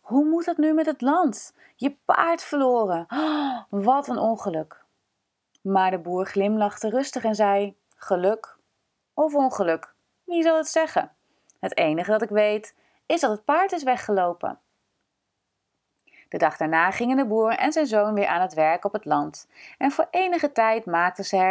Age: 30-49